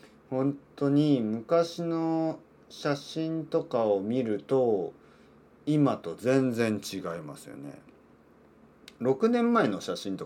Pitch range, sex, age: 105-170 Hz, male, 40-59